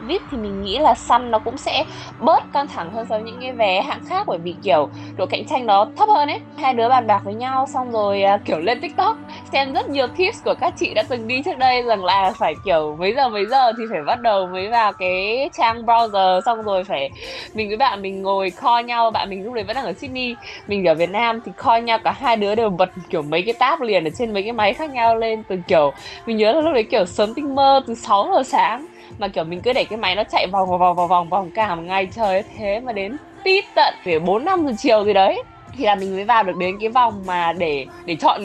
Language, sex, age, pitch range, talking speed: Vietnamese, female, 10-29, 195-265 Hz, 265 wpm